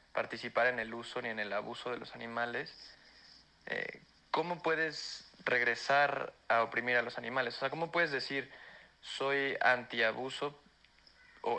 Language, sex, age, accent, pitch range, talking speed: English, male, 30-49, Mexican, 115-125 Hz, 140 wpm